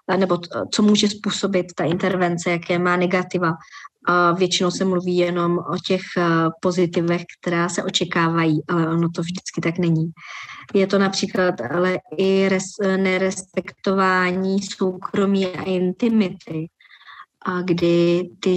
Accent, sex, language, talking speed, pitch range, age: native, male, Czech, 120 wpm, 170-190 Hz, 20-39